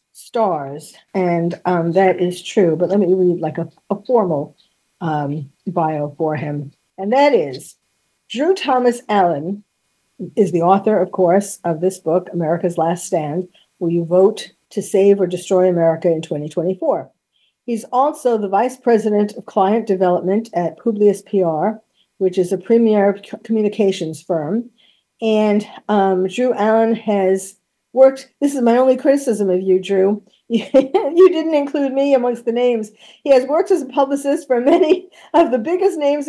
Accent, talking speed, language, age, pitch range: American, 155 wpm, English, 50-69, 185-265 Hz